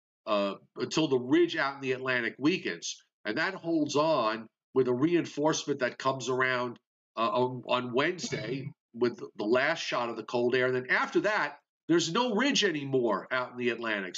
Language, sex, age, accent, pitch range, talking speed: English, male, 50-69, American, 125-180 Hz, 180 wpm